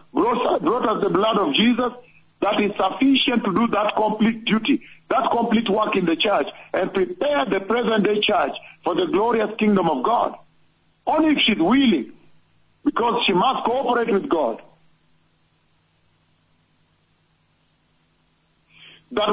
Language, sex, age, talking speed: English, male, 50-69, 135 wpm